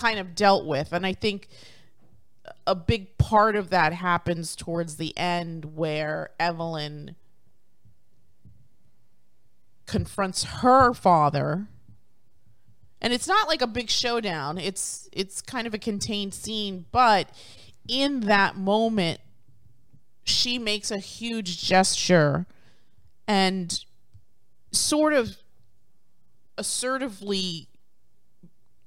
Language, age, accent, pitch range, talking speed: English, 30-49, American, 155-205 Hz, 100 wpm